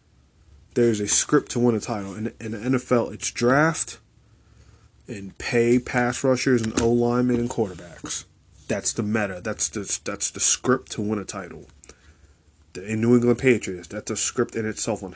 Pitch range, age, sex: 85-120 Hz, 20-39, male